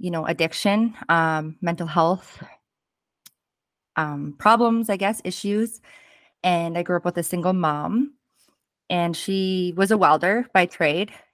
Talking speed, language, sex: 140 wpm, English, female